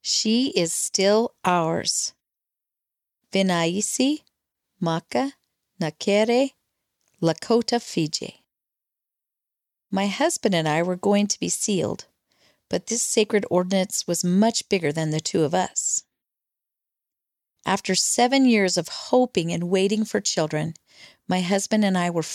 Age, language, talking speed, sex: 40-59, English, 120 wpm, female